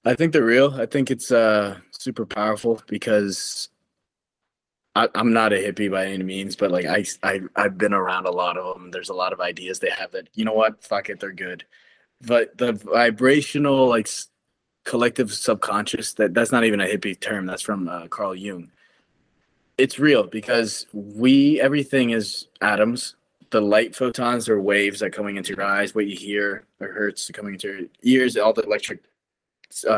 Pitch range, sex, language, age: 100-120 Hz, male, English, 20-39